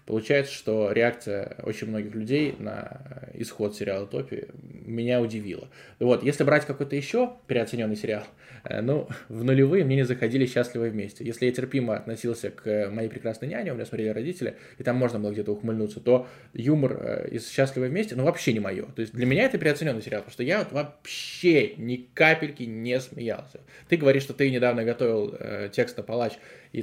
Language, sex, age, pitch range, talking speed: Russian, male, 20-39, 110-135 Hz, 180 wpm